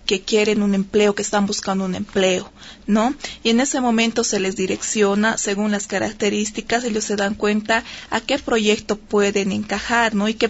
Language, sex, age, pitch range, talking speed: Spanish, female, 30-49, 200-220 Hz, 185 wpm